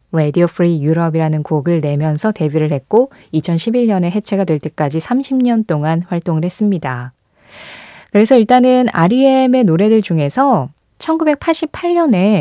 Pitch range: 155-245 Hz